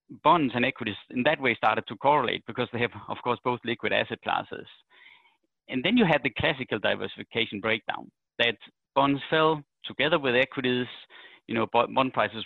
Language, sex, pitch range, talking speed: English, male, 110-135 Hz, 175 wpm